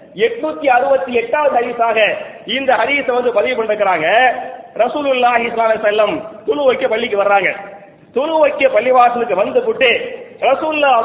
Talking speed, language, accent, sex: 165 wpm, English, Indian, male